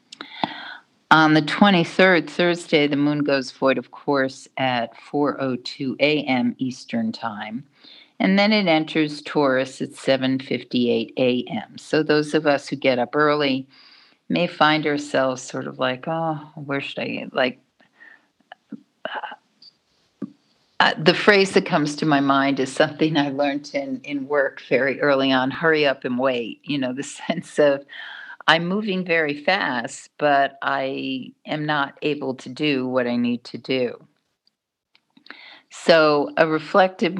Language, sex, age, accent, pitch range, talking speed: English, female, 50-69, American, 130-155 Hz, 145 wpm